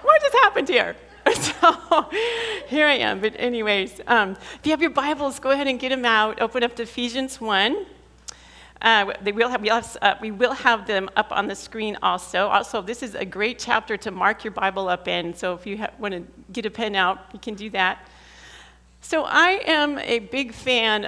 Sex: female